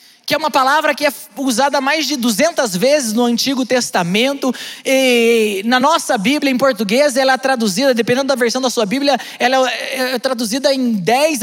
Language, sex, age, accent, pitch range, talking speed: Portuguese, male, 20-39, Brazilian, 235-280 Hz, 180 wpm